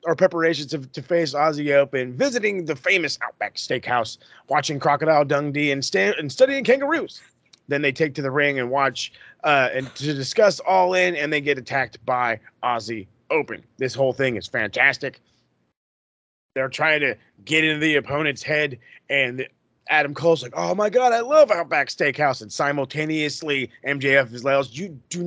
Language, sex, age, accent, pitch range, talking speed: English, male, 30-49, American, 125-155 Hz, 175 wpm